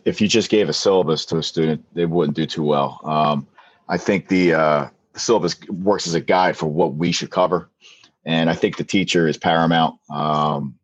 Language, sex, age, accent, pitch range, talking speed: English, male, 30-49, American, 75-90 Hz, 205 wpm